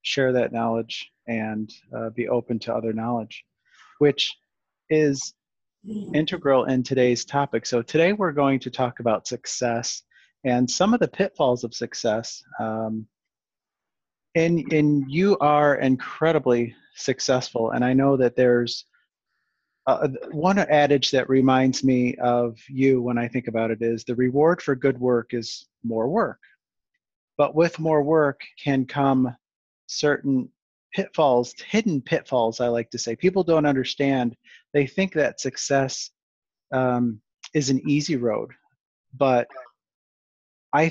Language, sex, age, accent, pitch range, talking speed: English, male, 30-49, American, 120-145 Hz, 135 wpm